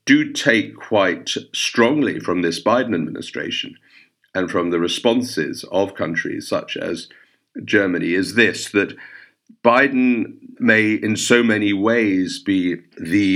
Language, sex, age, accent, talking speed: English, male, 50-69, British, 125 wpm